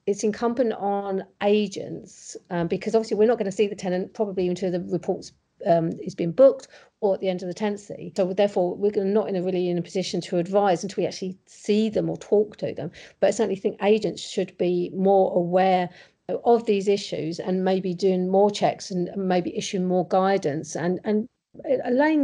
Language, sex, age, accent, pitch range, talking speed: English, female, 50-69, British, 180-210 Hz, 200 wpm